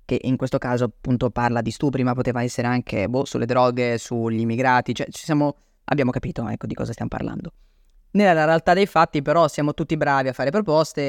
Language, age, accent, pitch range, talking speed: Italian, 20-39, native, 125-150 Hz, 205 wpm